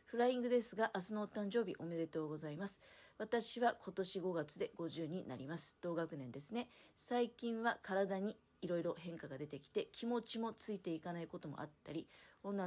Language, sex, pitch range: Japanese, female, 160-215 Hz